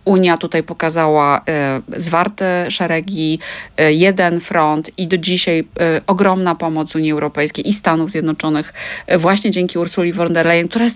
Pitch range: 165-210 Hz